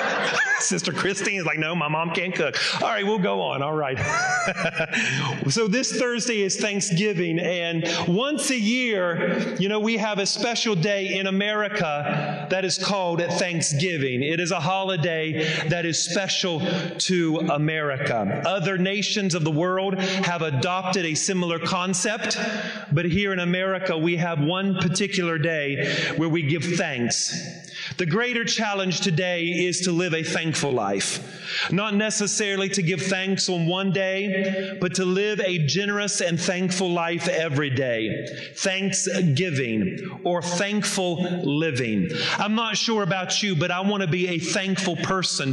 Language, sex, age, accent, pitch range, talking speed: English, male, 40-59, American, 170-200 Hz, 150 wpm